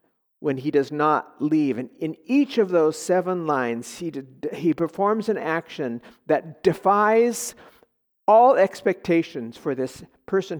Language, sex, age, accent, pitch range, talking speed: English, male, 50-69, American, 150-225 Hz, 140 wpm